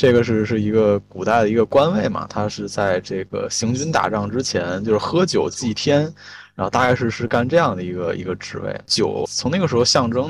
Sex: male